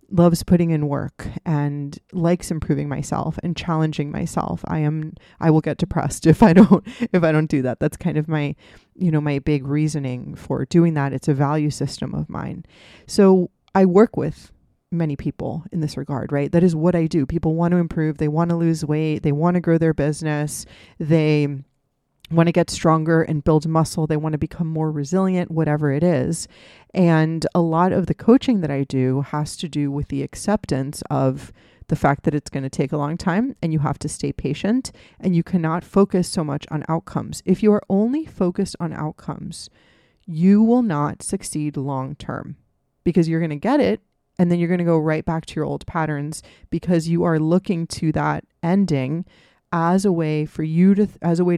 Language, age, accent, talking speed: English, 30-49, American, 205 wpm